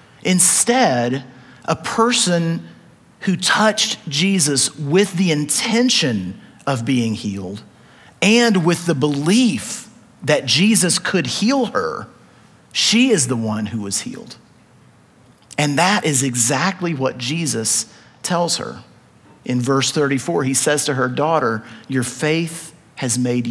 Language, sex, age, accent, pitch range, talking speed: English, male, 40-59, American, 145-220 Hz, 125 wpm